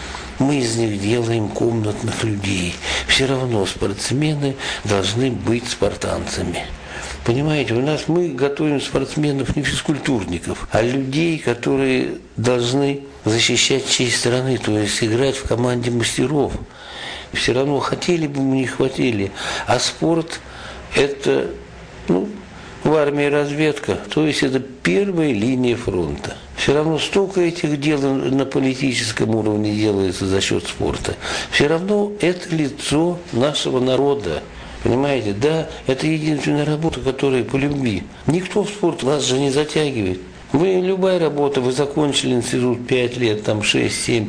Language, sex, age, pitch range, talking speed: Russian, male, 60-79, 115-155 Hz, 130 wpm